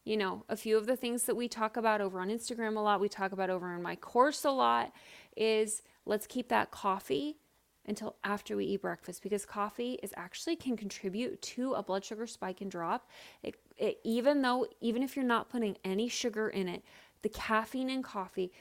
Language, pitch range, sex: English, 190-240 Hz, female